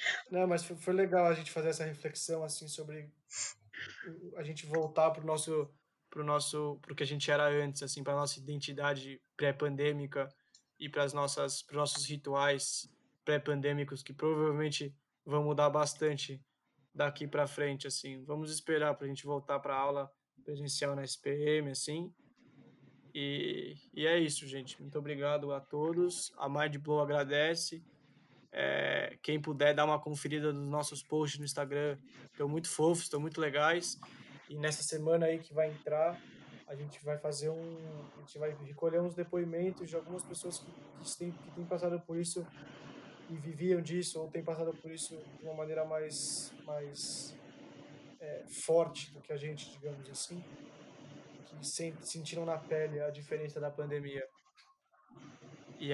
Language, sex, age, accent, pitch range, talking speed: Portuguese, male, 20-39, Brazilian, 145-160 Hz, 160 wpm